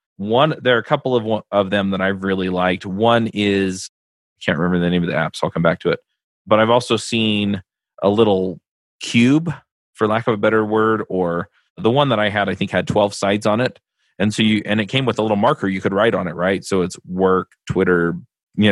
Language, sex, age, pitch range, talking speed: English, male, 30-49, 95-110 Hz, 240 wpm